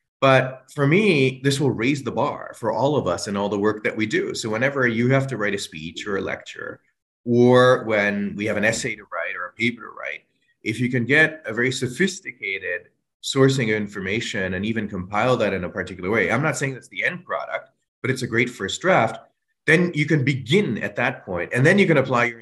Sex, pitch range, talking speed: male, 110-140 Hz, 235 wpm